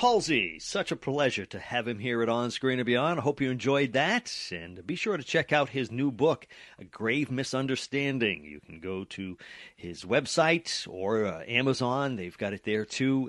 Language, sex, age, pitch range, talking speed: English, male, 40-59, 100-150 Hz, 200 wpm